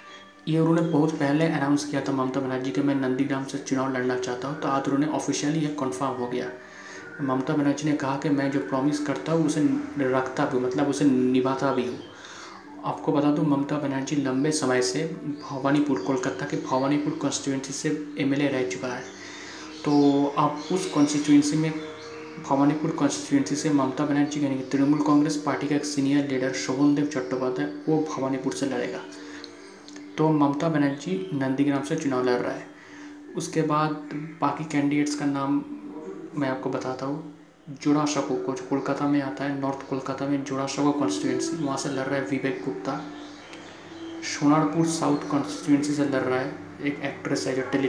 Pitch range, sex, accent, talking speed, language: 135-150 Hz, male, native, 170 wpm, Hindi